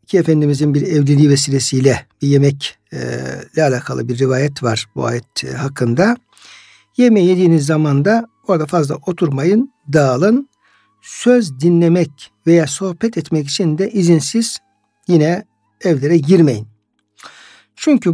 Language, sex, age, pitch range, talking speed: Turkish, male, 60-79, 145-195 Hz, 115 wpm